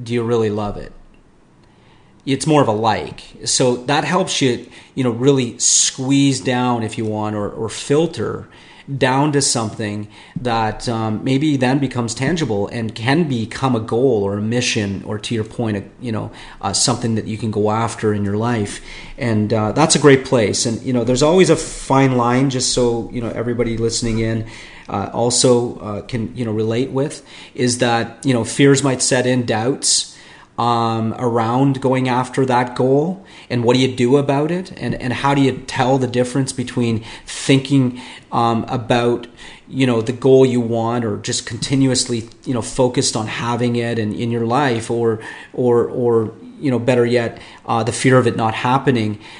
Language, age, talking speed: English, 40-59, 190 wpm